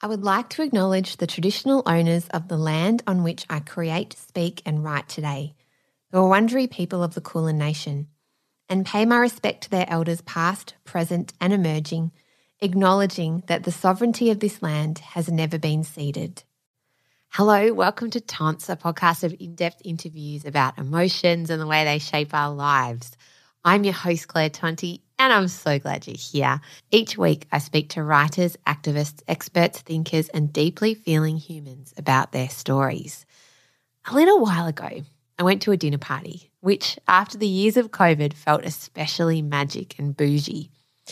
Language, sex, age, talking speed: English, female, 20-39, 165 wpm